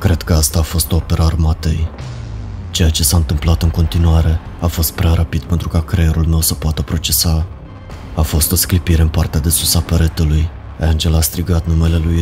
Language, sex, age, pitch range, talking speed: Romanian, male, 30-49, 80-85 Hz, 195 wpm